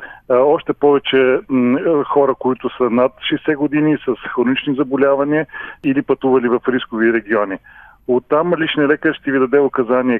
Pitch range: 120-140 Hz